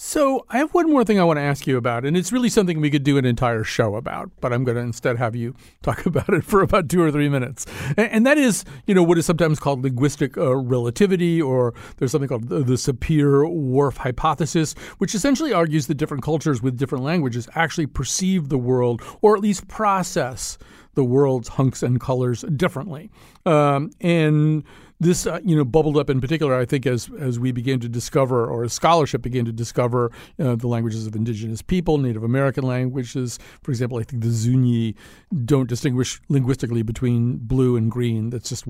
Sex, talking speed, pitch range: male, 200 wpm, 125-165 Hz